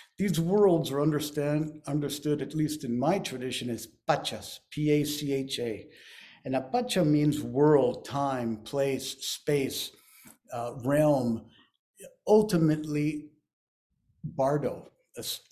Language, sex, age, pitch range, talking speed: English, male, 60-79, 130-155 Hz, 100 wpm